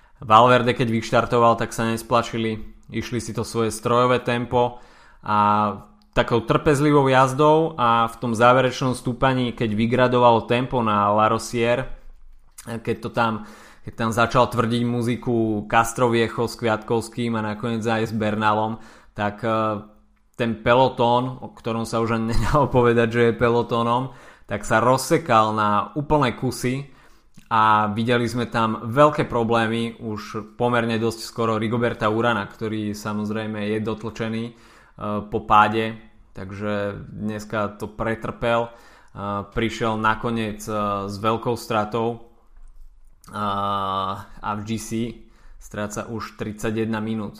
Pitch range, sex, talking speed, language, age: 110-120 Hz, male, 125 wpm, Slovak, 20-39